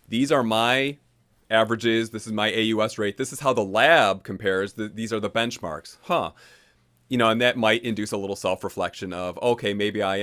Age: 30-49